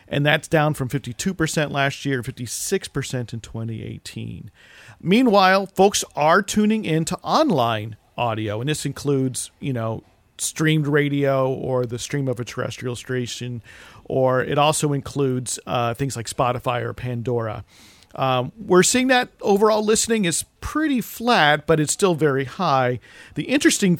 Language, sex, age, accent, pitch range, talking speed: English, male, 40-59, American, 125-160 Hz, 145 wpm